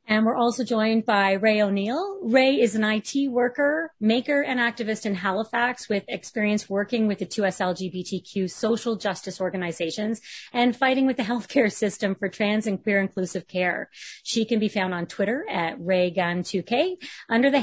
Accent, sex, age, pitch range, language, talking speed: American, female, 30-49, 195-240 Hz, English, 165 wpm